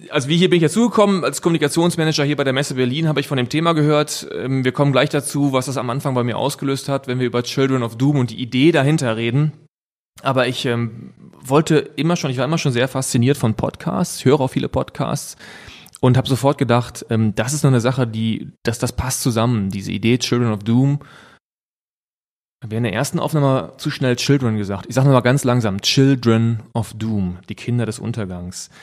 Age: 30-49